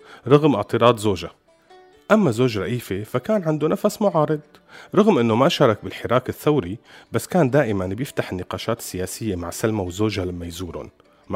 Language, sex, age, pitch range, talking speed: Arabic, male, 30-49, 95-140 Hz, 145 wpm